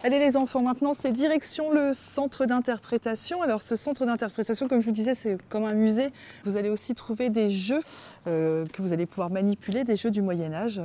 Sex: female